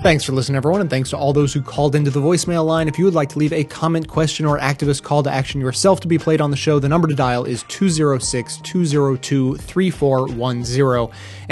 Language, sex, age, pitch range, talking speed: English, male, 20-39, 125-155 Hz, 220 wpm